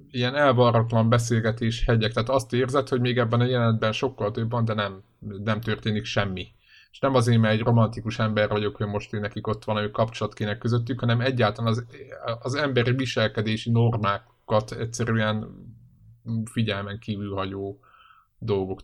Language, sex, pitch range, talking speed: Hungarian, male, 100-115 Hz, 160 wpm